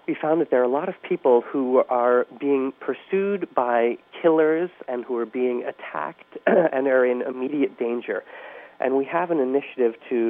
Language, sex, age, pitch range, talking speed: English, male, 40-59, 115-140 Hz, 180 wpm